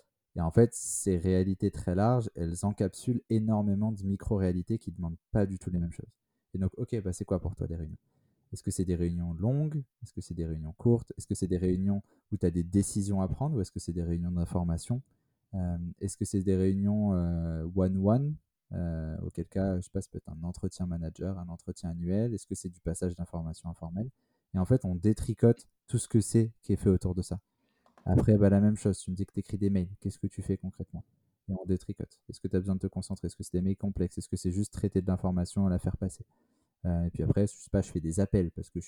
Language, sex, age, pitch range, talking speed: French, male, 20-39, 90-105 Hz, 260 wpm